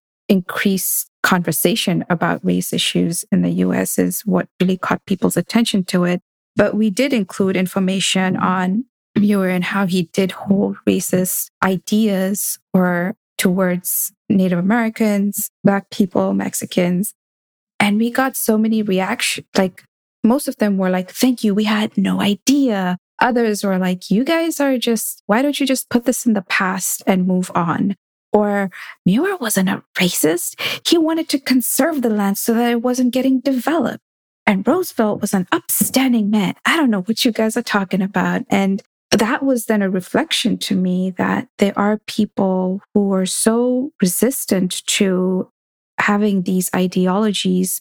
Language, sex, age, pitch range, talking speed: English, female, 20-39, 185-230 Hz, 160 wpm